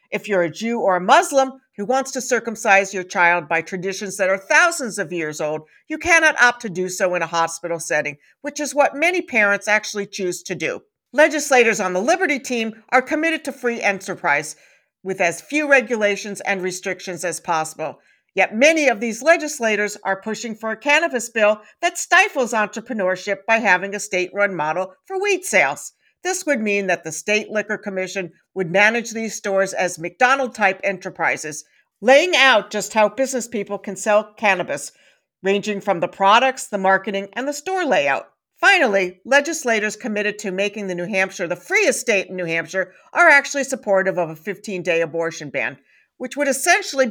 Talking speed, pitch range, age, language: 175 wpm, 185-255 Hz, 50-69, English